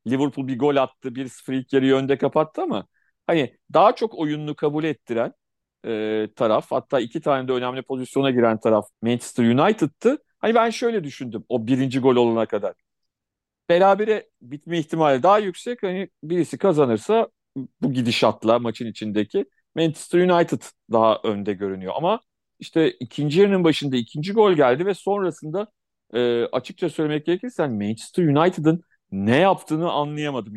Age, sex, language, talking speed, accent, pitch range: 40-59, male, Turkish, 145 wpm, native, 125-160 Hz